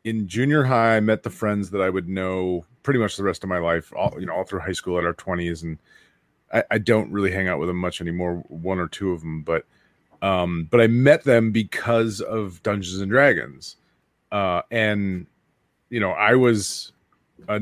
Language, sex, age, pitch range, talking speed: English, male, 30-49, 95-125 Hz, 210 wpm